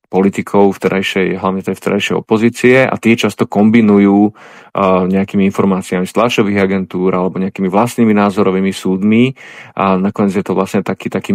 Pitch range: 95-100 Hz